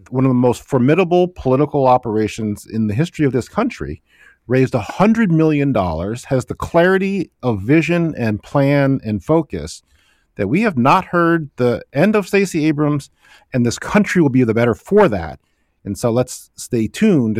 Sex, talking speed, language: male, 170 wpm, English